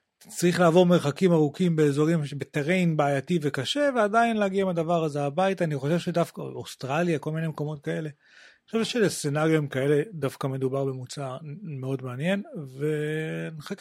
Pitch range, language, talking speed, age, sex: 140-180 Hz, Hebrew, 140 wpm, 30-49, male